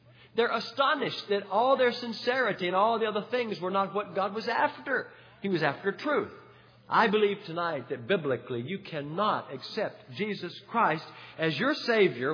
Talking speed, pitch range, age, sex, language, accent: 165 wpm, 155-220 Hz, 50-69, male, English, American